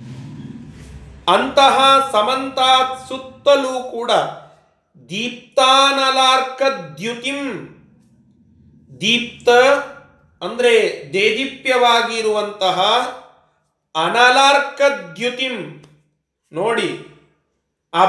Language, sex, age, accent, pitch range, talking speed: Kannada, male, 40-59, native, 190-260 Hz, 45 wpm